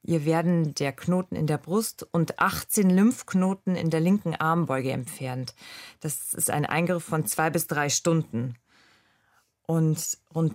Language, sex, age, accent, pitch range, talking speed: German, female, 40-59, German, 155-185 Hz, 150 wpm